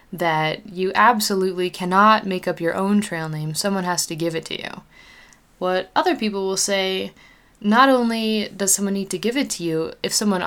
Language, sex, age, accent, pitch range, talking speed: English, female, 20-39, American, 165-210 Hz, 195 wpm